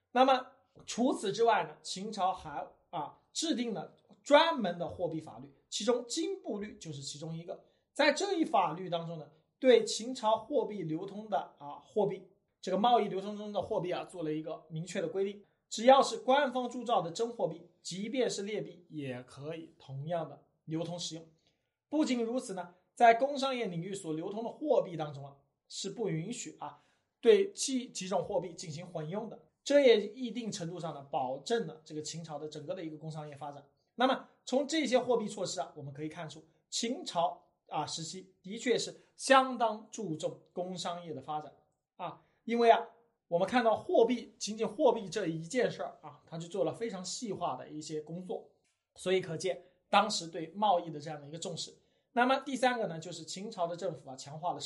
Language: Chinese